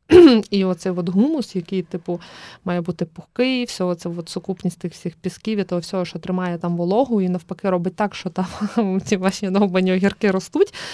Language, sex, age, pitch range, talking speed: Ukrainian, female, 20-39, 180-220 Hz, 175 wpm